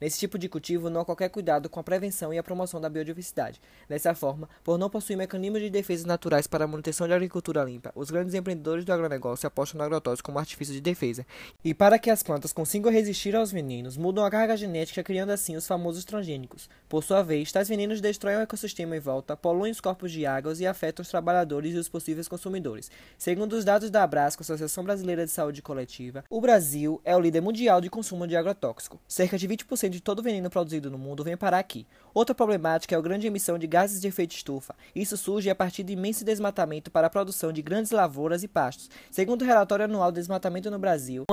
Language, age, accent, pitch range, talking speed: Portuguese, 20-39, Brazilian, 160-205 Hz, 220 wpm